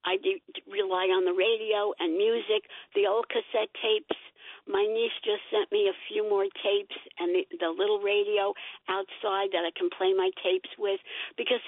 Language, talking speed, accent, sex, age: English, 175 wpm, American, female, 60-79